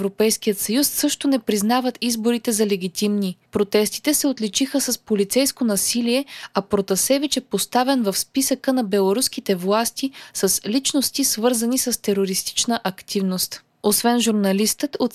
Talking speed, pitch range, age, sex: 125 wpm, 205-260 Hz, 20-39, female